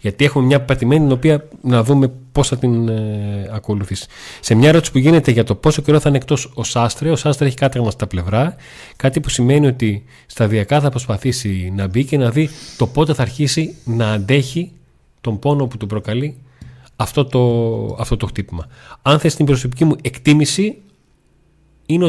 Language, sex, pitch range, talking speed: Greek, male, 105-140 Hz, 185 wpm